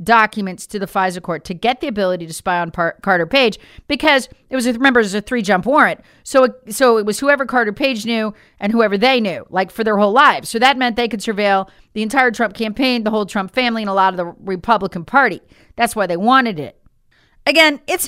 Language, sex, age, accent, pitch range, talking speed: English, female, 40-59, American, 195-285 Hz, 230 wpm